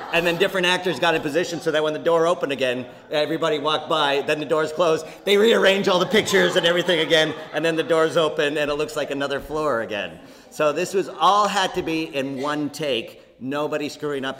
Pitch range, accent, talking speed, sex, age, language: 115-150 Hz, American, 225 wpm, male, 40-59, English